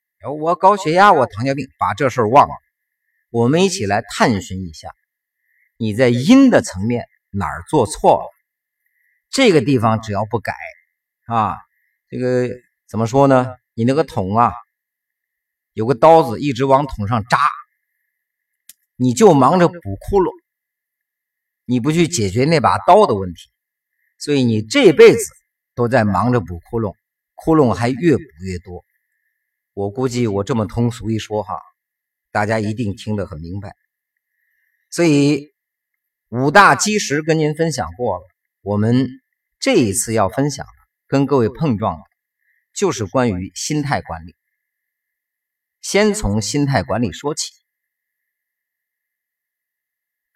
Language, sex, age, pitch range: Chinese, male, 50-69, 105-170 Hz